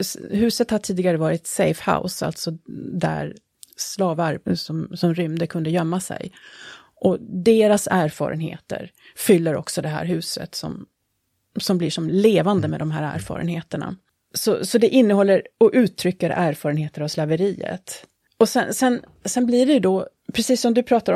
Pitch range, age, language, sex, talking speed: 165-215 Hz, 30-49, Swedish, female, 145 wpm